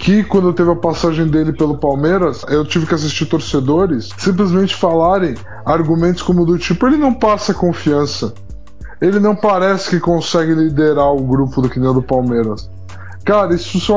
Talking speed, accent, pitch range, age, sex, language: 170 wpm, Brazilian, 145-180 Hz, 20-39, male, Portuguese